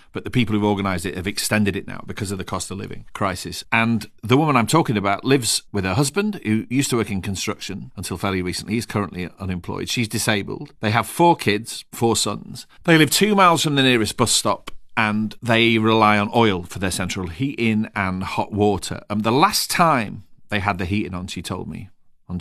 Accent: British